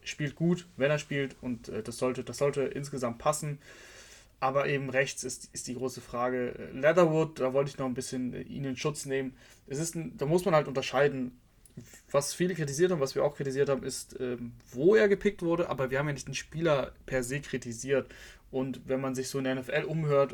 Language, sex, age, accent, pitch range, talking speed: German, male, 20-39, German, 125-140 Hz, 210 wpm